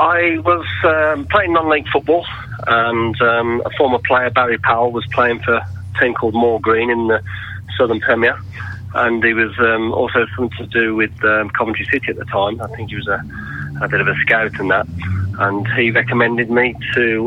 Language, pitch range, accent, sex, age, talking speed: English, 105-120 Hz, British, male, 30-49, 200 wpm